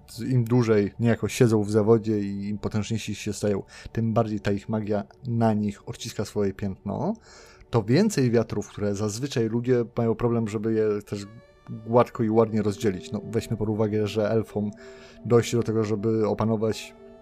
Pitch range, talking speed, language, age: 105-120 Hz, 165 wpm, Polish, 30-49